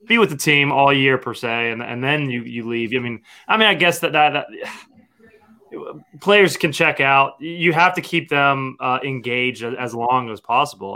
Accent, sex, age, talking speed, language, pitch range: American, male, 20-39, 210 wpm, English, 120-150 Hz